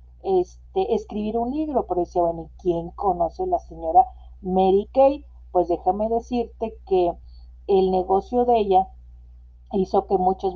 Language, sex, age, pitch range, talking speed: Spanish, female, 50-69, 180-230 Hz, 150 wpm